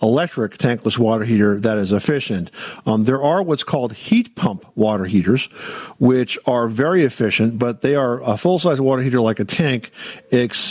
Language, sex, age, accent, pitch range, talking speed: English, male, 50-69, American, 115-145 Hz, 175 wpm